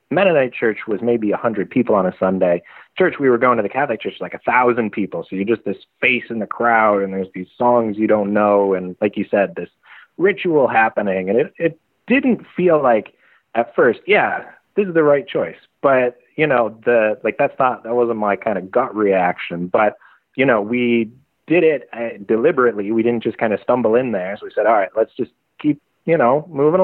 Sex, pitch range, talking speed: male, 105-145 Hz, 220 wpm